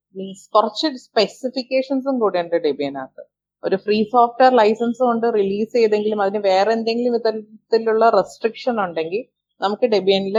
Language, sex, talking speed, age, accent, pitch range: Malayalam, female, 115 wpm, 30-49, native, 185-230 Hz